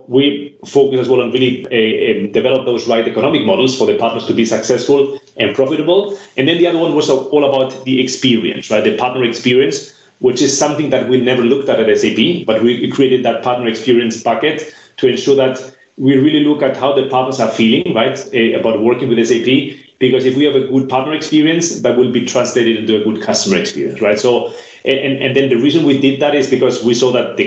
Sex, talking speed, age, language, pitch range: male, 220 wpm, 30-49, English, 120-140 Hz